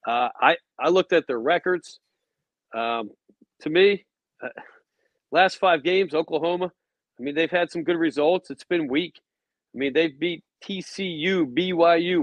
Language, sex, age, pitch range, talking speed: English, male, 40-59, 145-175 Hz, 155 wpm